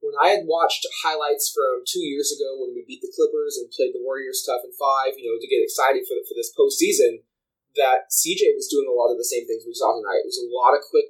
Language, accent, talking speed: English, American, 270 wpm